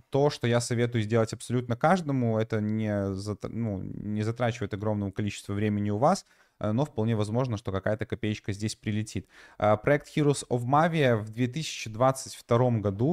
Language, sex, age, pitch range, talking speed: Russian, male, 20-39, 105-125 Hz, 140 wpm